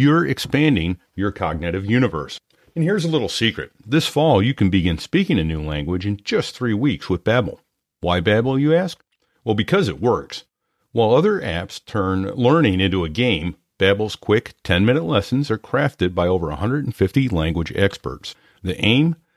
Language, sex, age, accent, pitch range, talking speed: English, male, 50-69, American, 90-130 Hz, 165 wpm